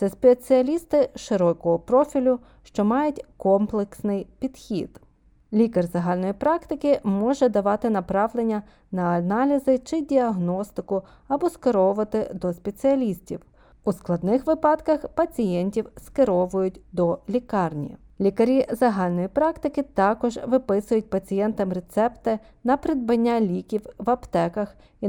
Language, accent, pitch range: Ukrainian, native, 190-260 Hz